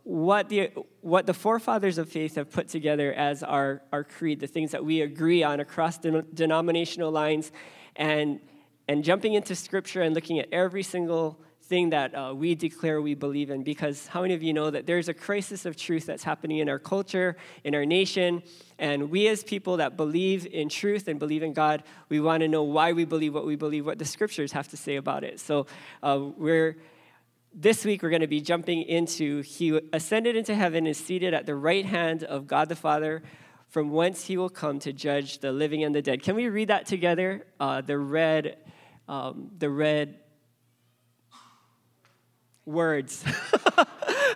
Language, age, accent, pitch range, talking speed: English, 20-39, American, 145-180 Hz, 190 wpm